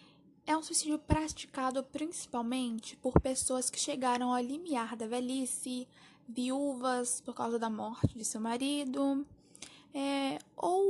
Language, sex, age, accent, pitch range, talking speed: Portuguese, female, 10-29, Brazilian, 240-280 Hz, 125 wpm